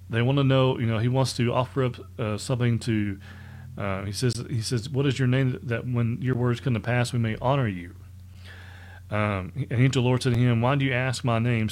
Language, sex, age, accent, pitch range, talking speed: English, male, 40-59, American, 95-125 Hz, 240 wpm